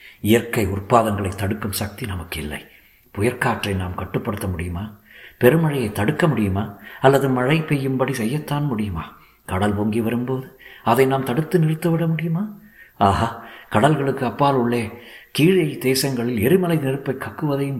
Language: Tamil